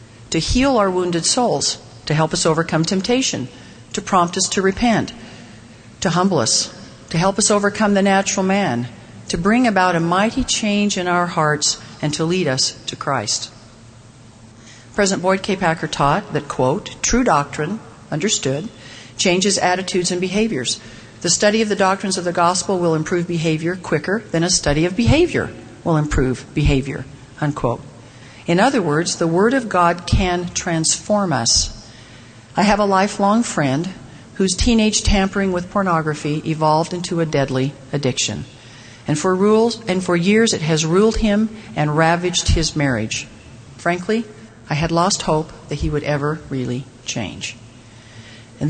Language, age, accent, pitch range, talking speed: English, 50-69, American, 135-195 Hz, 150 wpm